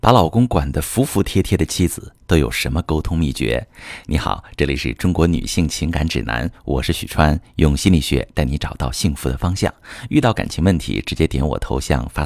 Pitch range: 80-115 Hz